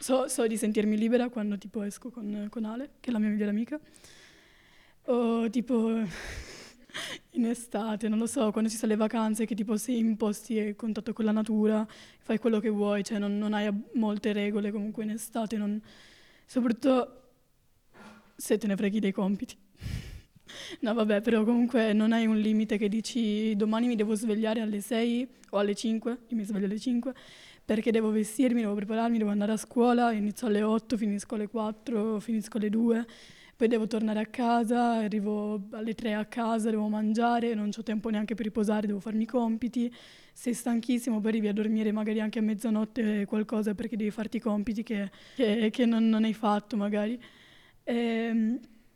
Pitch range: 215-235 Hz